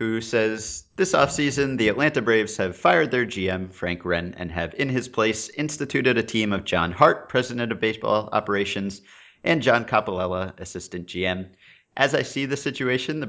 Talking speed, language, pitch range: 175 wpm, English, 90-120 Hz